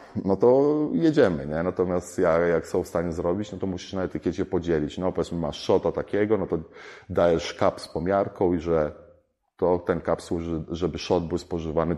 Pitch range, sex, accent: 80-95 Hz, male, native